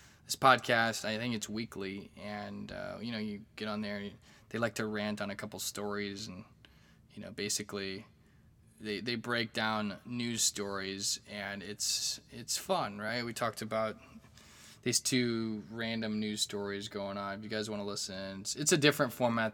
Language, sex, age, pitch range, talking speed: English, male, 20-39, 105-115 Hz, 185 wpm